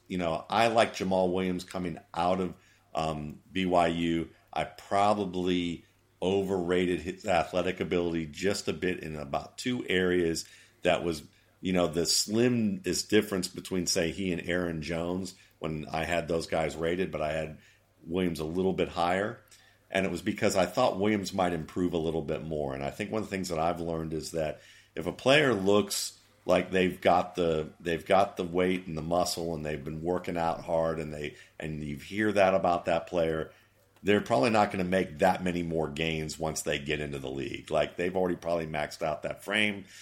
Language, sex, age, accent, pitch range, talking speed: English, male, 50-69, American, 80-95 Hz, 195 wpm